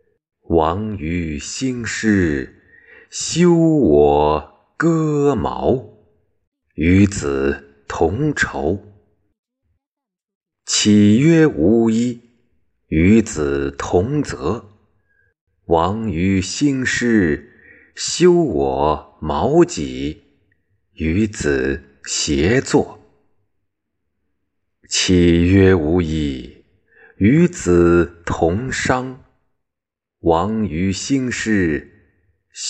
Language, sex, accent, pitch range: Chinese, male, native, 85-120 Hz